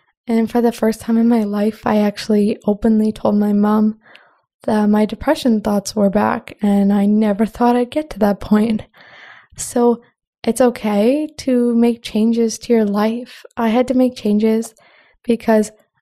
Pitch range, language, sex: 215-245 Hz, English, female